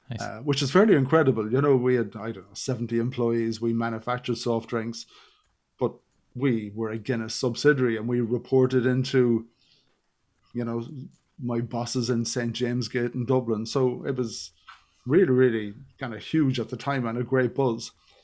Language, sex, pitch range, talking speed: English, male, 115-130 Hz, 180 wpm